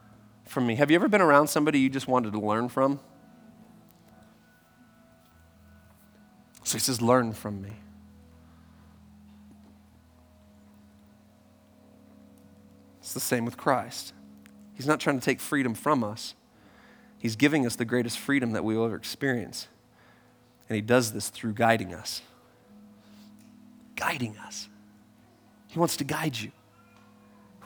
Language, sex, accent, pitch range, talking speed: English, male, American, 105-145 Hz, 130 wpm